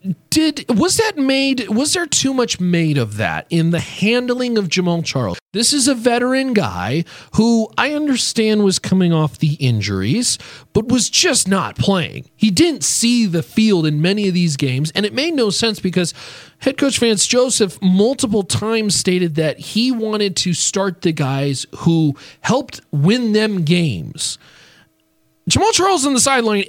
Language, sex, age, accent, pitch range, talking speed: English, male, 40-59, American, 160-240 Hz, 170 wpm